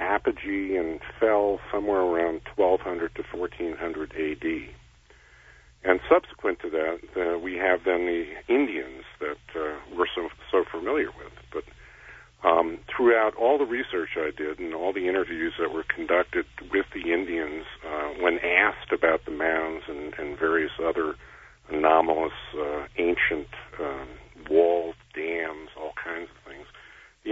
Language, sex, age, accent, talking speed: English, male, 50-69, American, 145 wpm